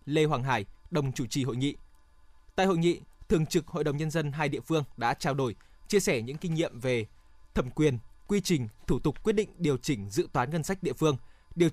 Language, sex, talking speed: Vietnamese, male, 235 wpm